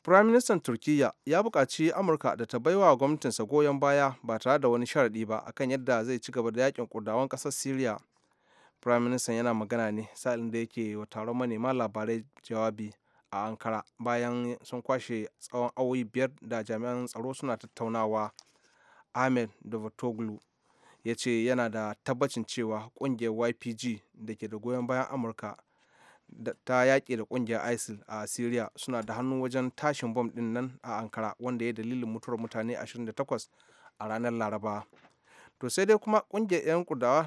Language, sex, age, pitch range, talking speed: English, male, 30-49, 110-130 Hz, 150 wpm